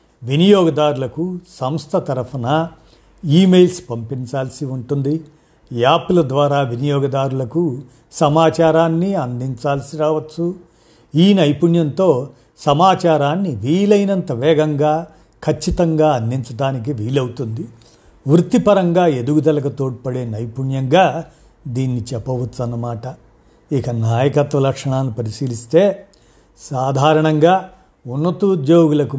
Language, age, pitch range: Telugu, 50-69, 130-165 Hz